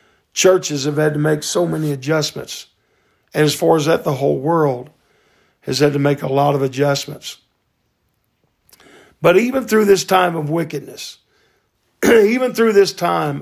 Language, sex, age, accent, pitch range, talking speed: English, male, 50-69, American, 140-185 Hz, 155 wpm